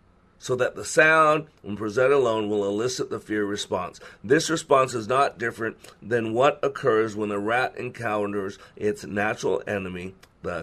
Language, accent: English, American